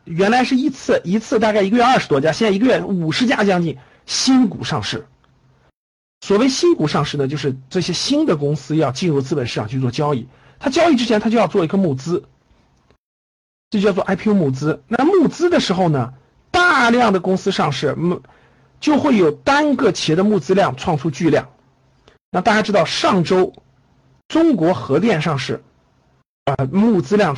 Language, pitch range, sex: Chinese, 140-215 Hz, male